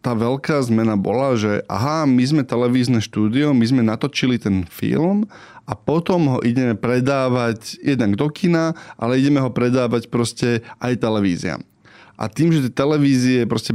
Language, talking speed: Slovak, 155 wpm